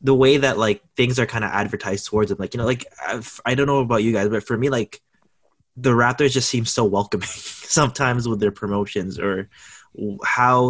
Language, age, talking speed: English, 20-39, 215 wpm